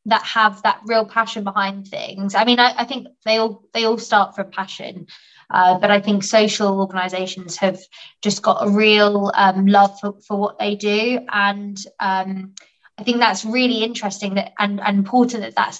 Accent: British